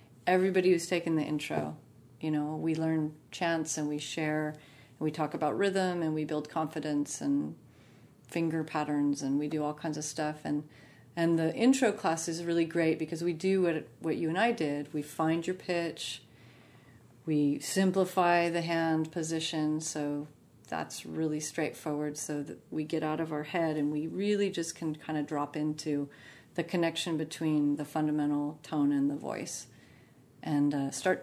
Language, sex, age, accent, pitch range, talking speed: English, female, 40-59, American, 145-165 Hz, 175 wpm